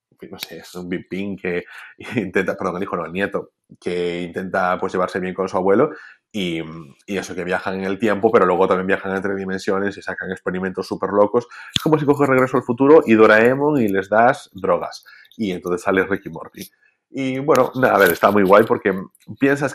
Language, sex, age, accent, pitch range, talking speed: Spanish, male, 30-49, Spanish, 90-115 Hz, 205 wpm